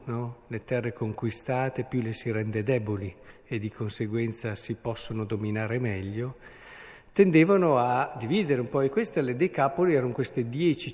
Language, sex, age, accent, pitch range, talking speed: Italian, male, 50-69, native, 115-150 Hz, 150 wpm